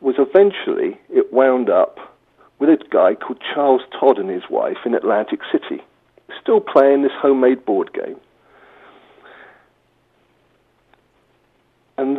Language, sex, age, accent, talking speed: English, male, 50-69, British, 120 wpm